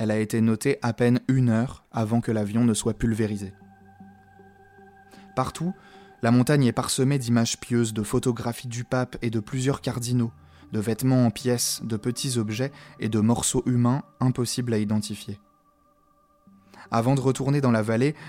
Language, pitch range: French, 110-130 Hz